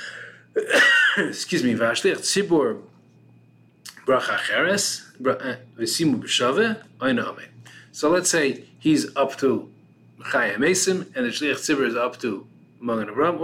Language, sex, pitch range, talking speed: English, male, 120-175 Hz, 80 wpm